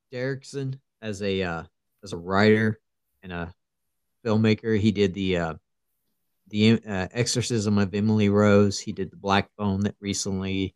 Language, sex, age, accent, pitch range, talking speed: English, male, 40-59, American, 100-140 Hz, 150 wpm